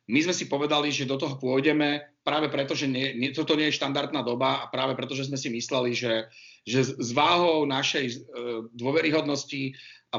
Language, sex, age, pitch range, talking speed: Slovak, male, 40-59, 120-140 Hz, 175 wpm